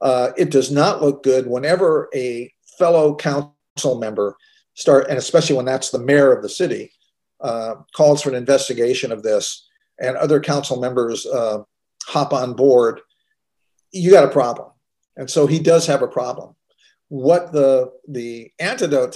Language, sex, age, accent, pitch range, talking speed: English, male, 50-69, American, 130-170 Hz, 160 wpm